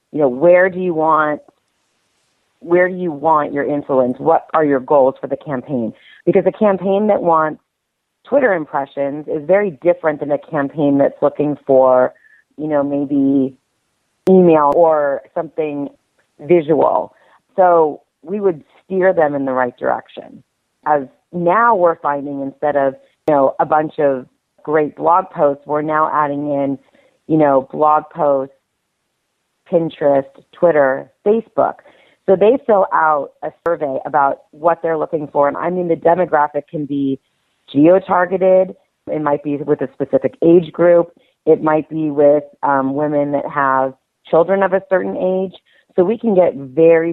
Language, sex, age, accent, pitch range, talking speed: English, female, 40-59, American, 140-175 Hz, 155 wpm